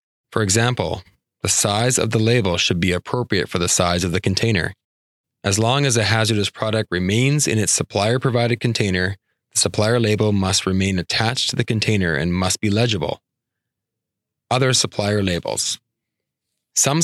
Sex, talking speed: male, 160 wpm